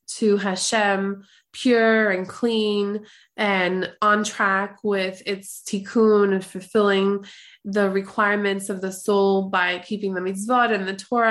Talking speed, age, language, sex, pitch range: 135 wpm, 20-39, English, female, 195-230 Hz